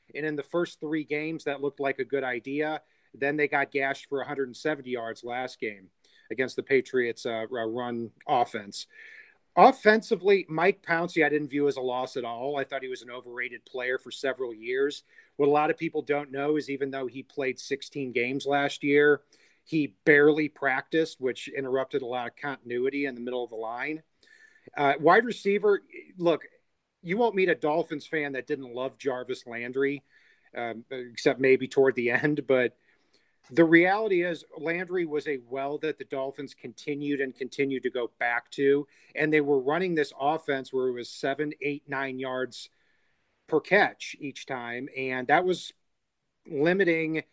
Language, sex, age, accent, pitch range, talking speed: English, male, 40-59, American, 130-160 Hz, 175 wpm